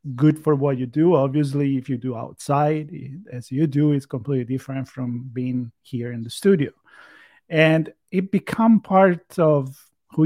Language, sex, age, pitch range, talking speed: English, male, 40-59, 130-160 Hz, 165 wpm